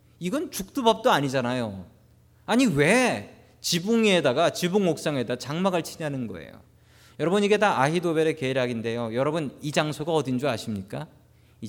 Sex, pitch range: male, 115-180 Hz